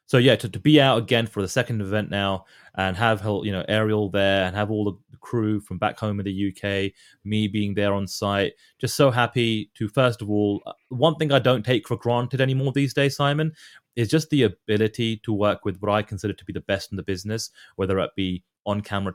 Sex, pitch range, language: male, 100-120 Hz, English